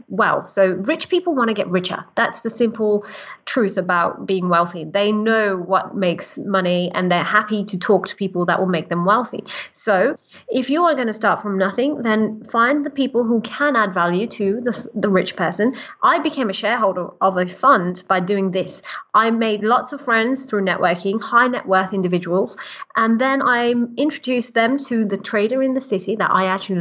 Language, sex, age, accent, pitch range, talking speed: English, female, 30-49, British, 185-235 Hz, 200 wpm